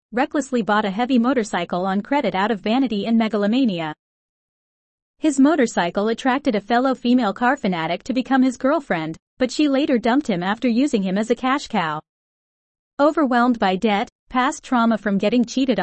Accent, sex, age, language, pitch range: American, female, 30-49, Chinese, 195-260 Hz